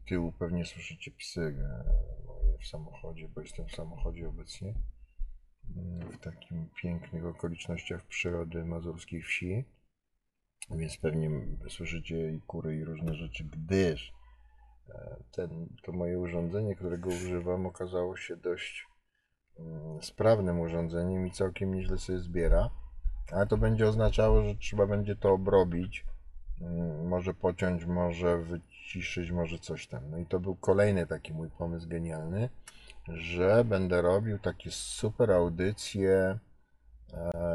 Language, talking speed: Polish, 120 wpm